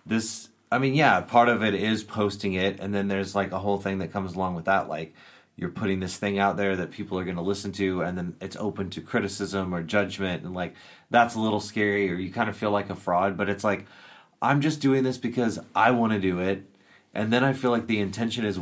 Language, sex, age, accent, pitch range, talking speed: English, male, 30-49, American, 95-115 Hz, 255 wpm